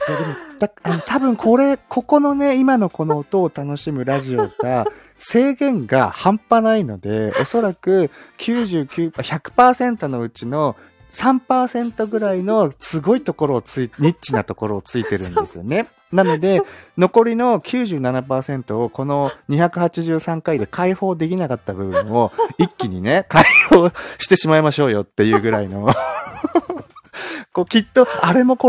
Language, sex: Japanese, male